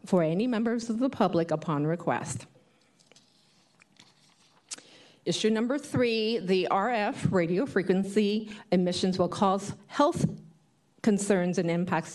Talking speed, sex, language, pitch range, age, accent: 110 wpm, female, English, 165-200 Hz, 40-59, American